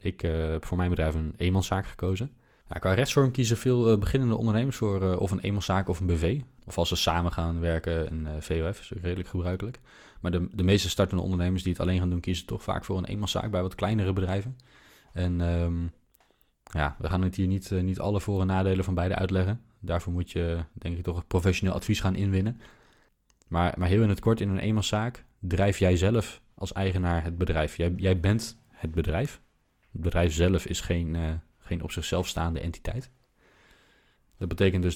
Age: 20-39